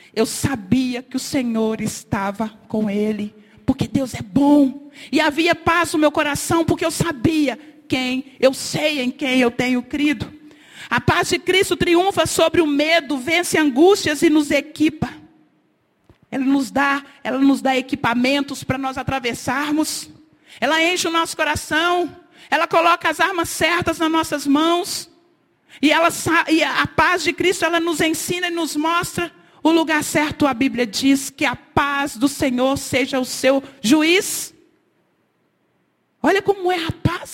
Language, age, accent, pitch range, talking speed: Portuguese, 40-59, Brazilian, 260-330 Hz, 150 wpm